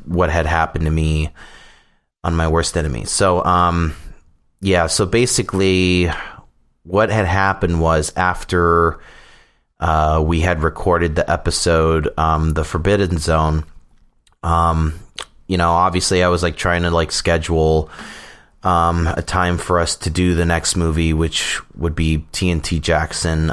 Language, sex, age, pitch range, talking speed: English, male, 30-49, 75-85 Hz, 140 wpm